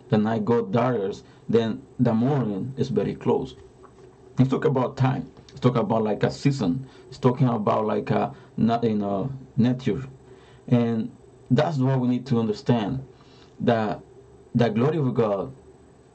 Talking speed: 150 wpm